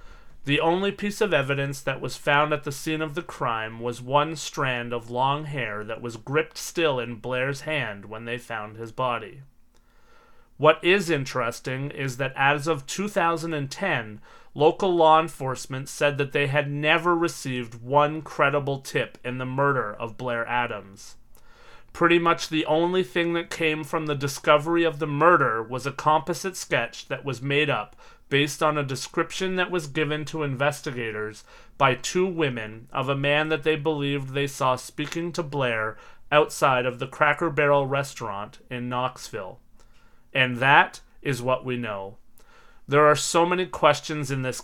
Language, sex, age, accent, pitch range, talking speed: English, male, 30-49, American, 130-155 Hz, 165 wpm